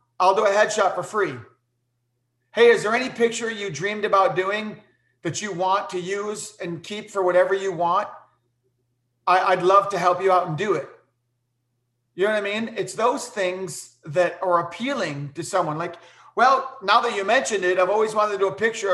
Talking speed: 200 wpm